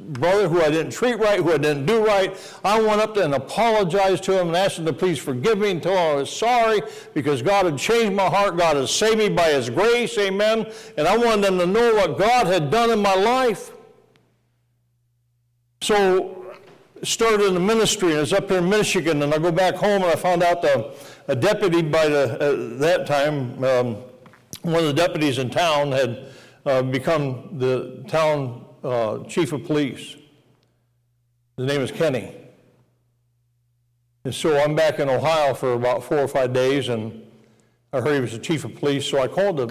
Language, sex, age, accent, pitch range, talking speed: English, male, 60-79, American, 125-185 Hz, 200 wpm